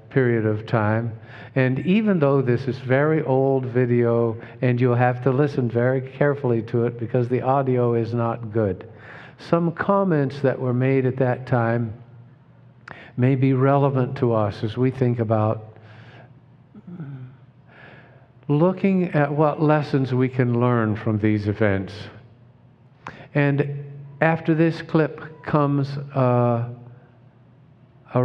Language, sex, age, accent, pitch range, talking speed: English, male, 50-69, American, 120-140 Hz, 125 wpm